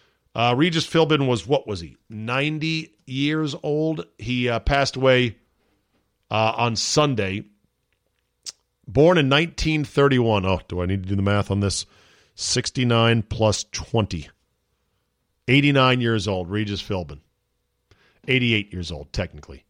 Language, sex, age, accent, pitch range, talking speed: English, male, 40-59, American, 105-135 Hz, 130 wpm